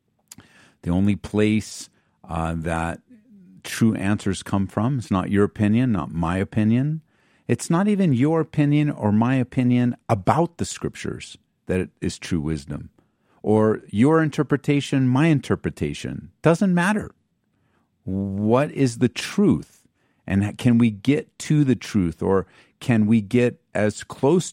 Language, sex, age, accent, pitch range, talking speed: English, male, 50-69, American, 95-125 Hz, 135 wpm